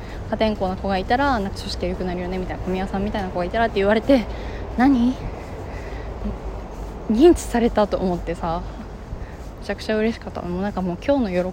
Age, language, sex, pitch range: 20-39, Japanese, female, 185-275 Hz